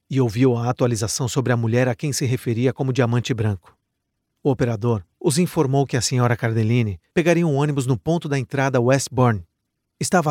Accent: Brazilian